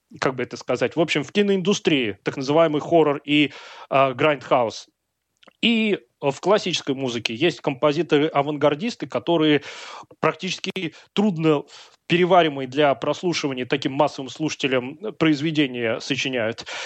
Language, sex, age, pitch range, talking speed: Russian, male, 20-39, 145-185 Hz, 115 wpm